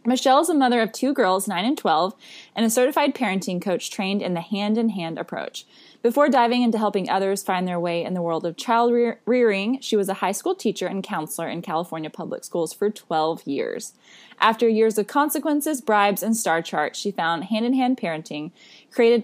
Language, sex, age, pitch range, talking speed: English, female, 20-39, 185-245 Hz, 190 wpm